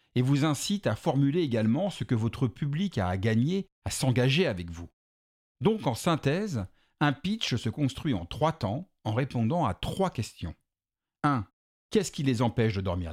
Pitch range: 110-165 Hz